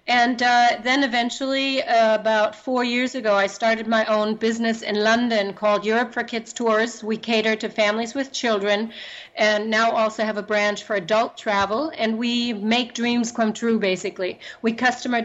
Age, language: 40-59, English